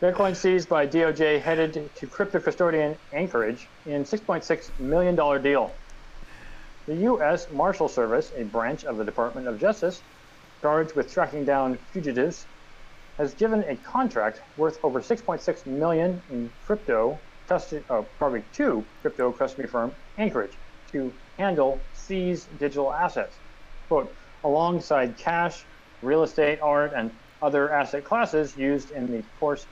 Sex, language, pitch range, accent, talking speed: male, English, 125-170 Hz, American, 130 wpm